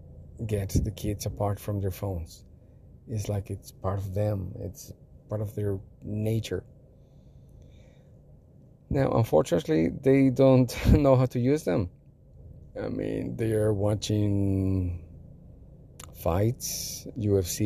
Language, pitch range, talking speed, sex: English, 95-115 Hz, 115 wpm, male